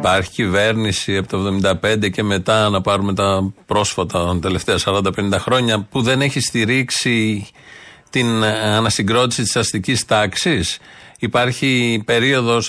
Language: Greek